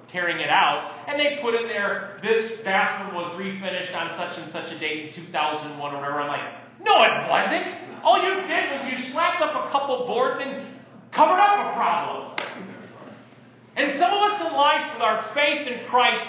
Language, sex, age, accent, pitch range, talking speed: English, male, 40-59, American, 195-255 Hz, 195 wpm